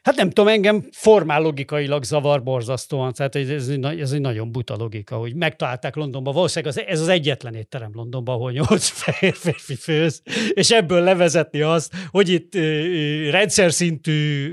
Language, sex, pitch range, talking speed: Hungarian, male, 135-170 Hz, 145 wpm